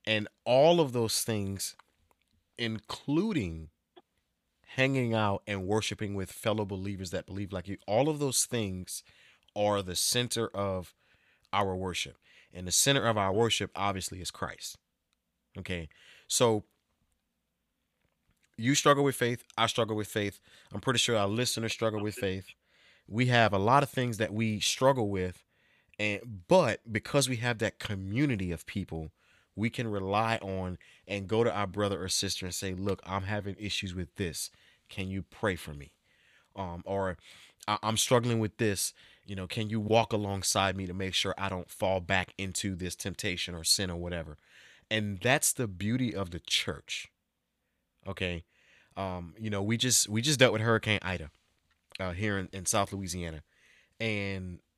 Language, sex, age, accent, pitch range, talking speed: English, male, 30-49, American, 95-110 Hz, 165 wpm